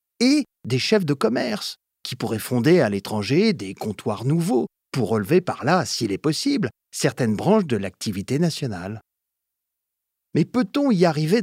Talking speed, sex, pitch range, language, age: 150 wpm, male, 115-175 Hz, French, 50-69